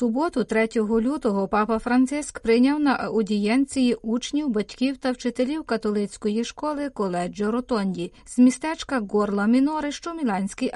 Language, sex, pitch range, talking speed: Ukrainian, female, 220-265 Hz, 115 wpm